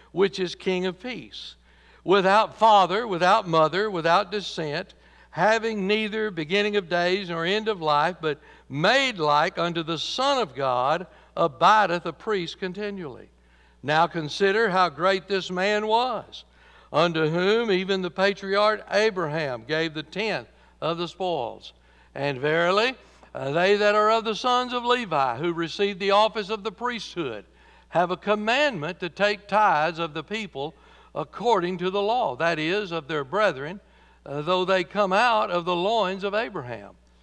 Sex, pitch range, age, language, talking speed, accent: male, 155-210 Hz, 60-79, English, 155 wpm, American